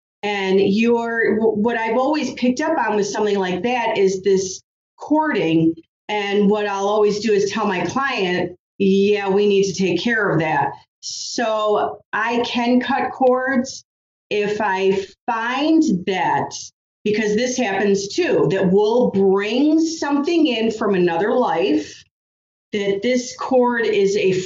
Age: 40-59